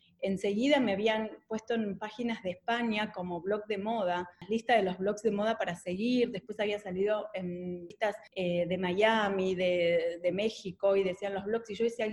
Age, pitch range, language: 30-49, 190-230 Hz, Spanish